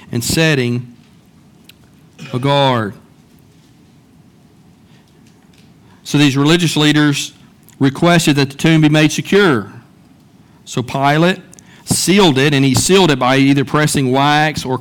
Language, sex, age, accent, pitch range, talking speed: English, male, 50-69, American, 135-155 Hz, 115 wpm